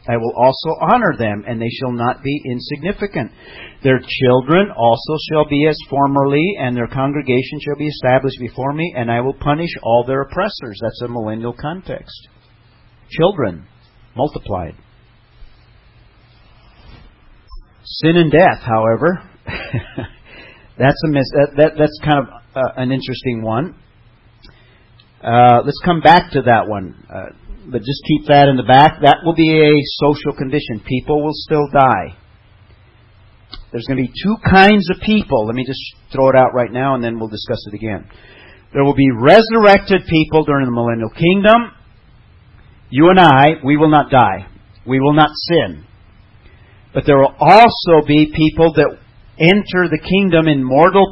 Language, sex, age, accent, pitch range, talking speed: English, male, 50-69, American, 115-150 Hz, 155 wpm